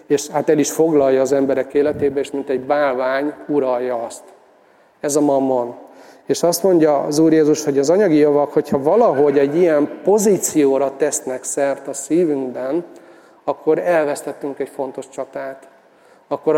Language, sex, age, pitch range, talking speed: Hungarian, male, 40-59, 140-160 Hz, 150 wpm